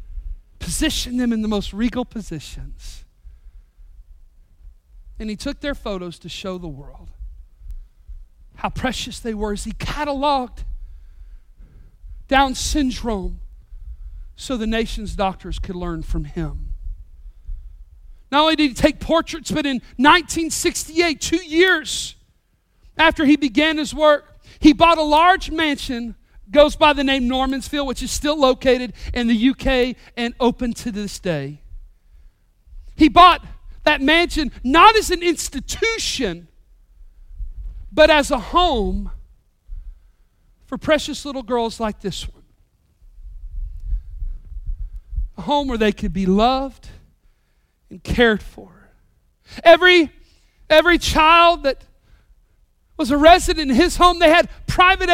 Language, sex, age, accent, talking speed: English, male, 40-59, American, 125 wpm